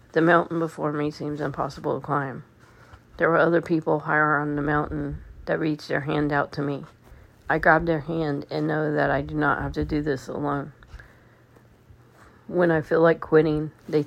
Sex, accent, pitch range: female, American, 125-155 Hz